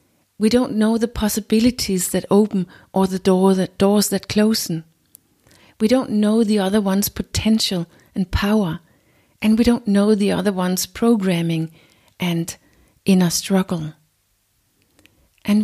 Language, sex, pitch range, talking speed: English, female, 175-215 Hz, 125 wpm